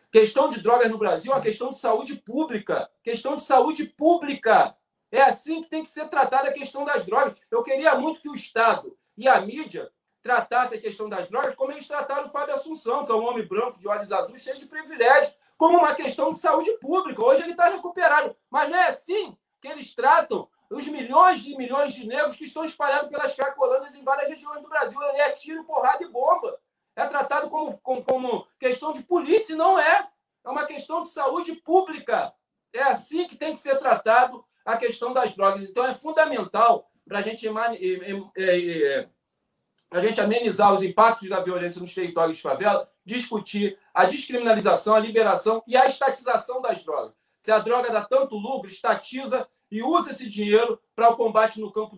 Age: 40-59